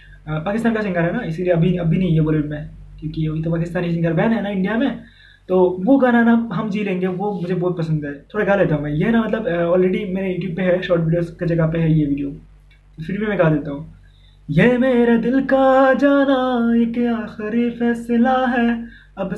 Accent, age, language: native, 20-39, Hindi